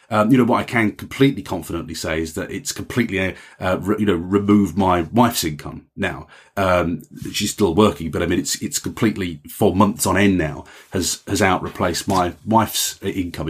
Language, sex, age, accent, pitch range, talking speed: English, male, 30-49, British, 95-120 Hz, 200 wpm